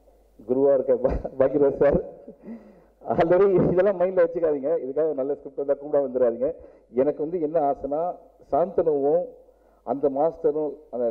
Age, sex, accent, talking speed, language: 50-69, male, native, 120 wpm, Tamil